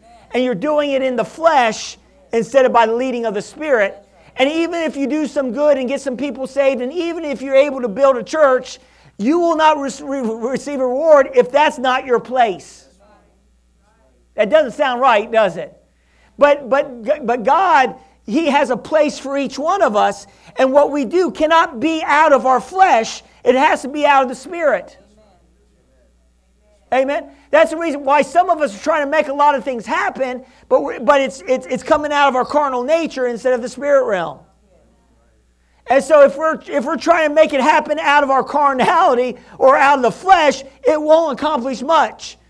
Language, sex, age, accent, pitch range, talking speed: English, male, 50-69, American, 240-300 Hz, 200 wpm